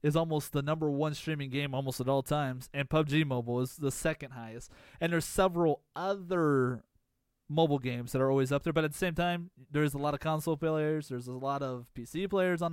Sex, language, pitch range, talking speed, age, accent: male, English, 135-165 Hz, 220 wpm, 20-39, American